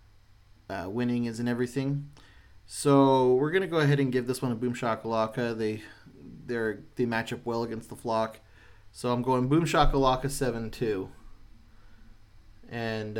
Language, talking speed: English, 140 wpm